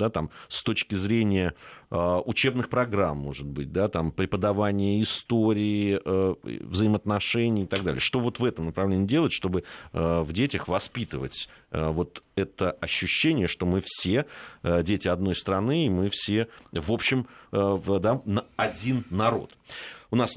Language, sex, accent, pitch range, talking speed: Russian, male, native, 85-115 Hz, 155 wpm